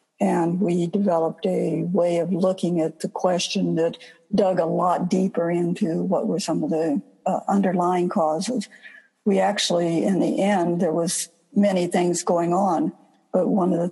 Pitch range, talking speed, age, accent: 170-210 Hz, 170 wpm, 60-79, American